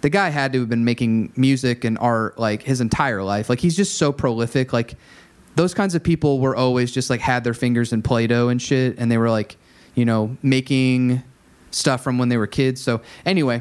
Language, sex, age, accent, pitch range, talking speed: English, male, 30-49, American, 115-145 Hz, 220 wpm